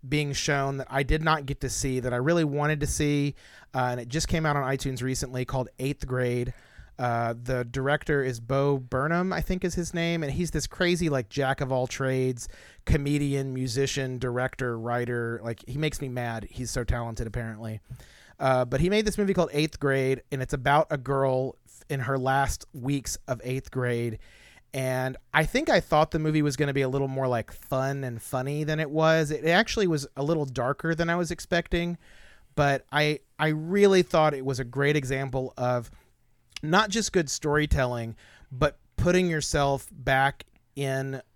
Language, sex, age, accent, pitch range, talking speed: English, male, 30-49, American, 125-150 Hz, 190 wpm